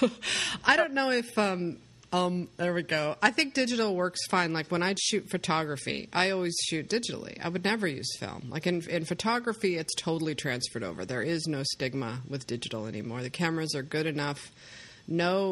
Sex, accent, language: female, American, English